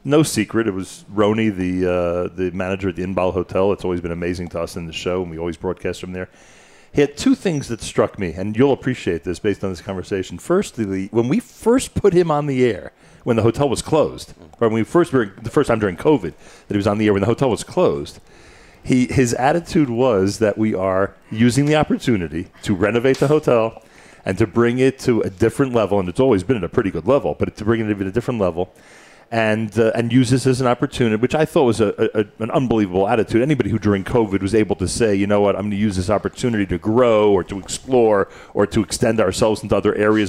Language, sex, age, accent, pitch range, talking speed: English, male, 40-59, American, 95-120 Hz, 245 wpm